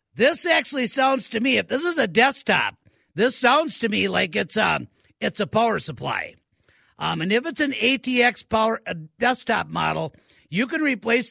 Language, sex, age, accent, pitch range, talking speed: English, male, 50-69, American, 205-255 Hz, 175 wpm